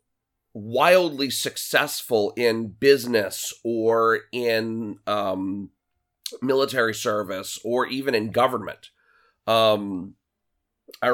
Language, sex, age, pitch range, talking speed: English, male, 30-49, 100-120 Hz, 80 wpm